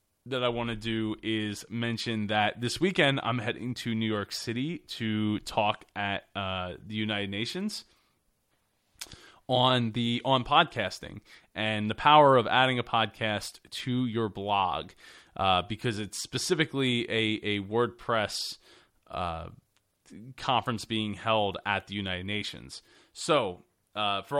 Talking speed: 135 wpm